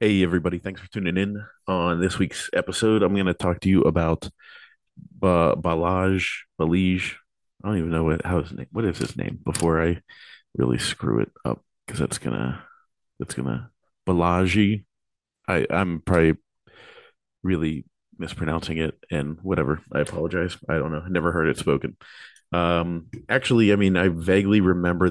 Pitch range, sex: 80-90 Hz, male